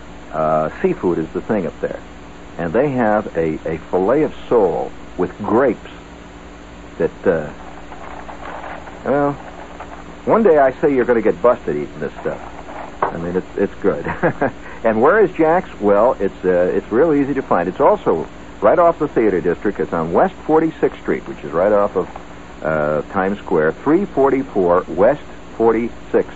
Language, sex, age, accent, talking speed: English, male, 60-79, American, 165 wpm